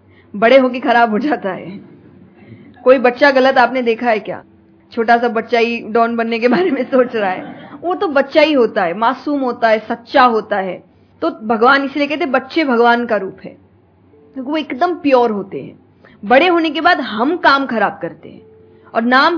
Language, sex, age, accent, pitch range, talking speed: Hindi, female, 20-39, native, 220-265 Hz, 200 wpm